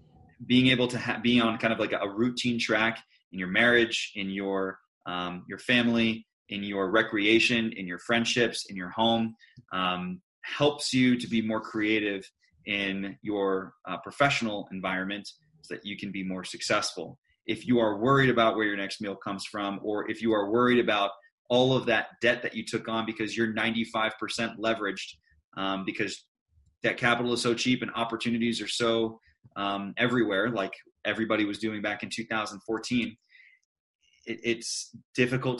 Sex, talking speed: male, 175 wpm